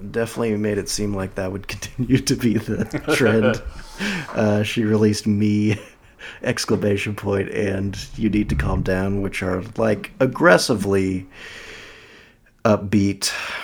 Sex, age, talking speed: male, 30-49, 130 wpm